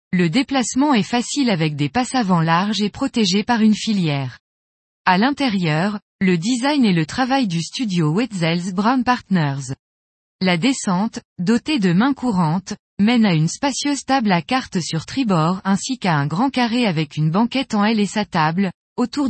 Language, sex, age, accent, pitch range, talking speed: French, female, 20-39, French, 175-250 Hz, 170 wpm